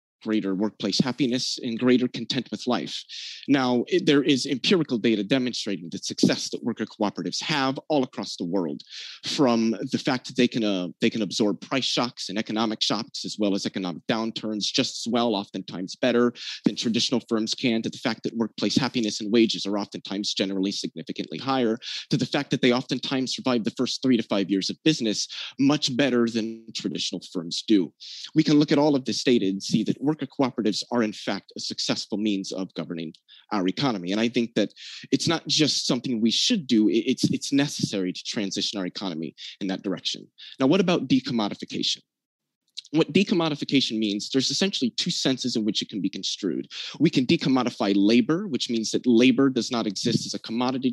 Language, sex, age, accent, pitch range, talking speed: English, male, 30-49, American, 105-140 Hz, 190 wpm